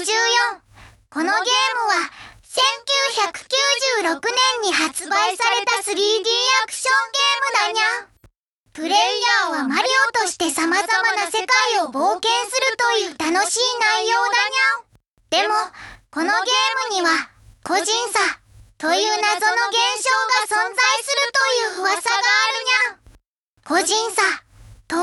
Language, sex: Japanese, male